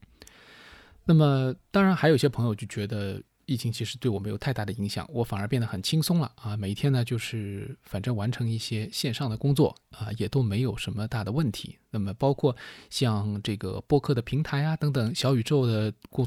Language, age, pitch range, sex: Chinese, 20-39, 110-145 Hz, male